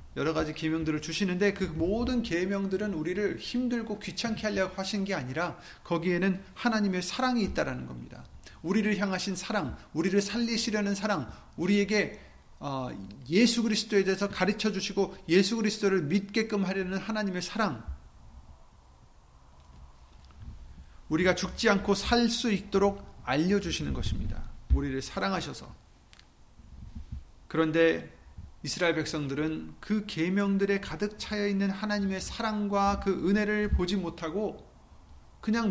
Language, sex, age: Korean, male, 40-59